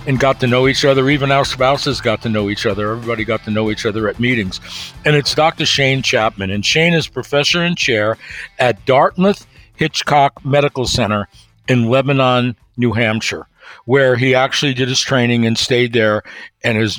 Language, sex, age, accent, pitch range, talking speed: English, male, 60-79, American, 115-145 Hz, 185 wpm